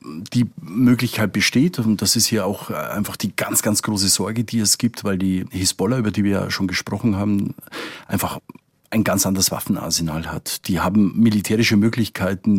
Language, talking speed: German, 175 wpm